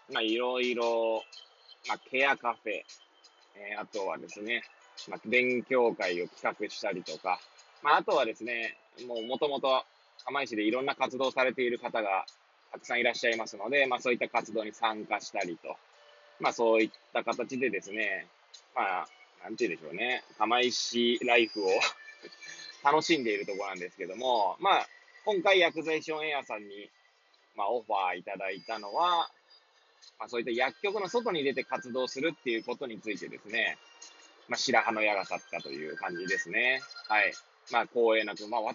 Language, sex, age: Japanese, male, 20-39